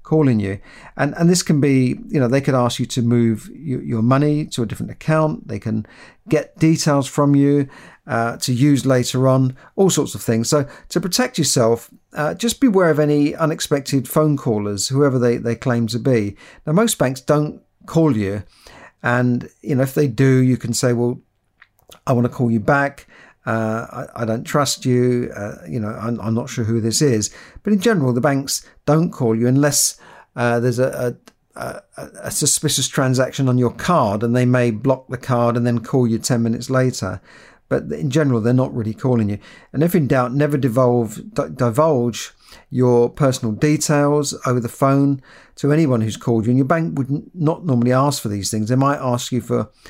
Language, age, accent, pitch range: English, 50-69, British, 120-145 Hz